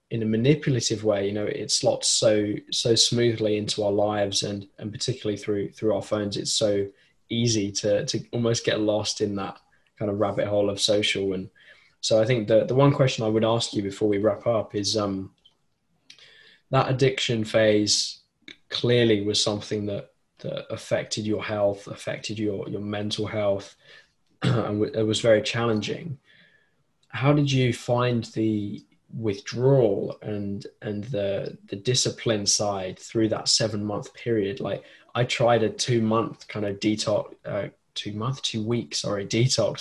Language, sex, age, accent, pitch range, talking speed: English, male, 10-29, British, 105-115 Hz, 165 wpm